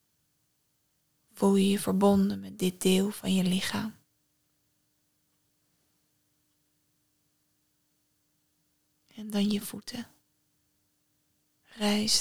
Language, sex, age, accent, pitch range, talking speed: Dutch, female, 20-39, Dutch, 185-205 Hz, 75 wpm